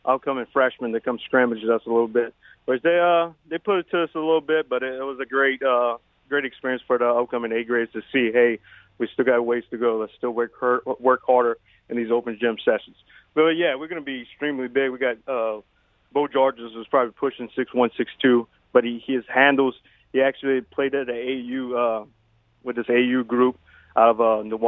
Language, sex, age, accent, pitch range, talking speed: English, male, 30-49, American, 120-135 Hz, 220 wpm